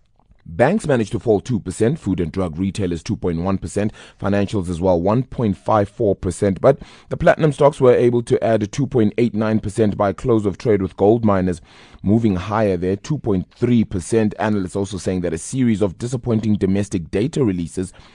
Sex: male